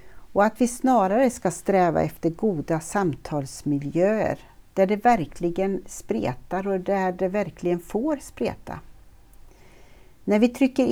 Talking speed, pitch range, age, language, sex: 120 wpm, 160-205 Hz, 60-79, Swedish, female